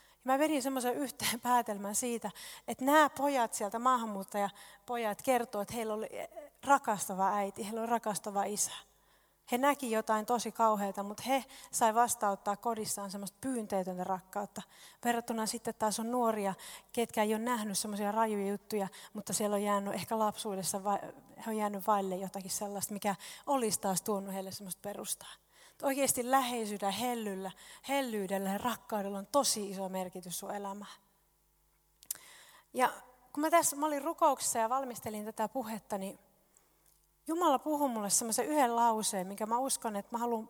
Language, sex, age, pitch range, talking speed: Finnish, female, 30-49, 205-245 Hz, 150 wpm